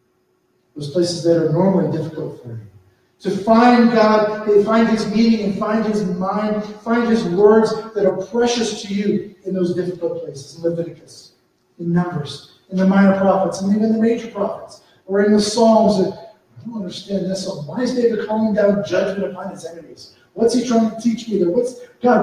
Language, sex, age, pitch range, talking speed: English, male, 40-59, 165-220 Hz, 180 wpm